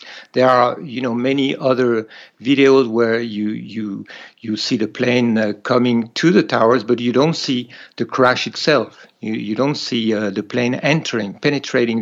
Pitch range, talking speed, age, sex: 115-145 Hz, 175 wpm, 60-79, male